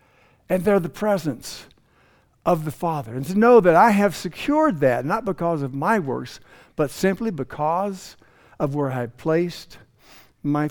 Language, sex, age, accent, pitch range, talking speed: English, male, 60-79, American, 125-170 Hz, 155 wpm